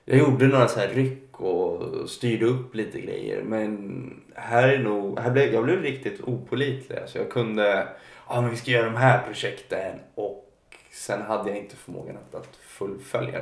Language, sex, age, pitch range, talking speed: Swedish, male, 20-39, 95-115 Hz, 190 wpm